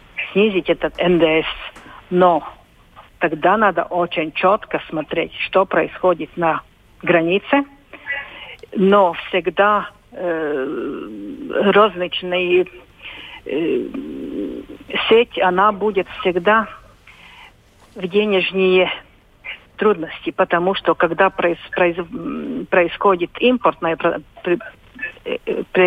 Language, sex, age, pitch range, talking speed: Russian, female, 50-69, 175-200 Hz, 75 wpm